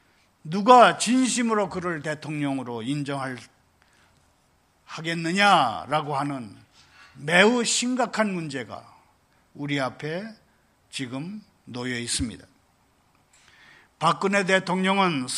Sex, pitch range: male, 160-205 Hz